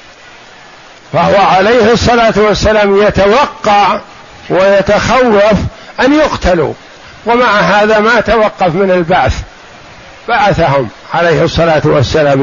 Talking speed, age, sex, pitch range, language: 85 wpm, 60-79, male, 195-235 Hz, Arabic